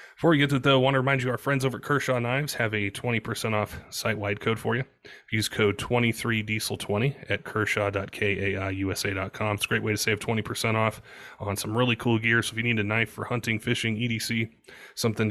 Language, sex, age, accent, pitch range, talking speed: English, male, 30-49, American, 105-125 Hz, 210 wpm